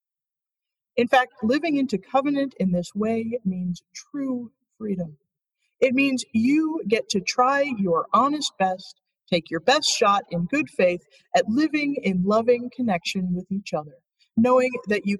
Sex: female